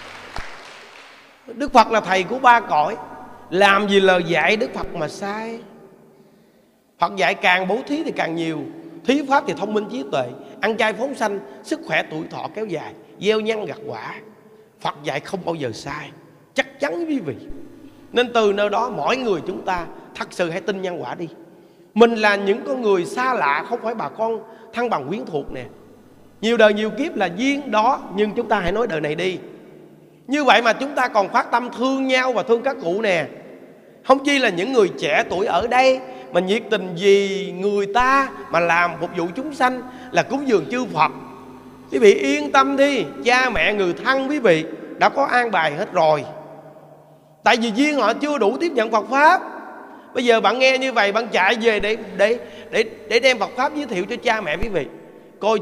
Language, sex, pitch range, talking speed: Vietnamese, male, 190-260 Hz, 210 wpm